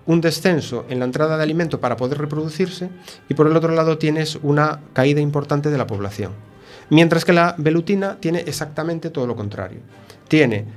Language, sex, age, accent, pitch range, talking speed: Spanish, male, 30-49, Spanish, 125-165 Hz, 180 wpm